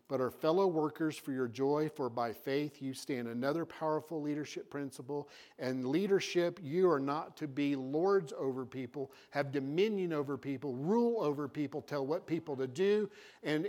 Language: English